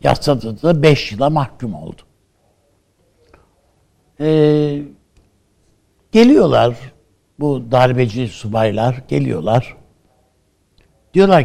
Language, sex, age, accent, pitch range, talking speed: Turkish, male, 60-79, native, 110-165 Hz, 70 wpm